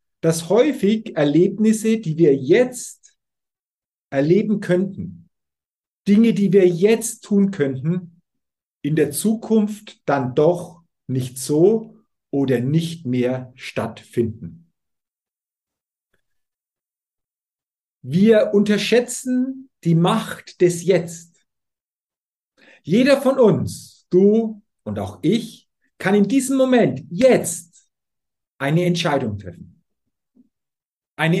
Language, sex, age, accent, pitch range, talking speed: German, male, 50-69, German, 145-215 Hz, 90 wpm